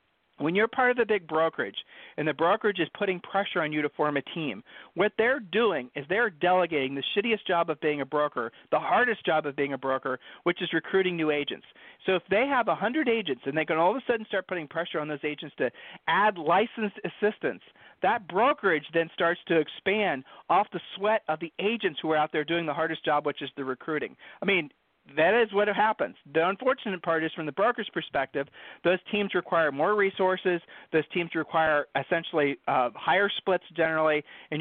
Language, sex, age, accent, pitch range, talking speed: English, male, 40-59, American, 150-200 Hz, 205 wpm